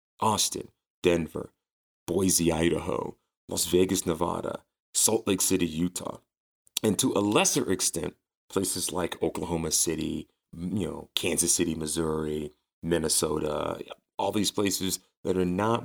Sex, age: male, 30-49